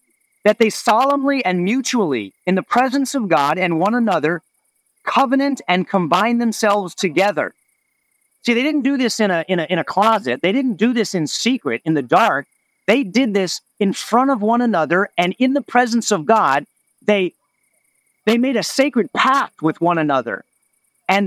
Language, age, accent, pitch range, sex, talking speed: English, 40-59, American, 195-260 Hz, male, 180 wpm